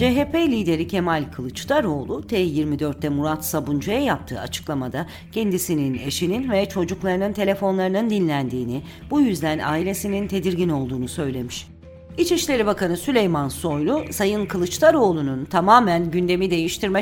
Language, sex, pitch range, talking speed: Turkish, female, 155-215 Hz, 105 wpm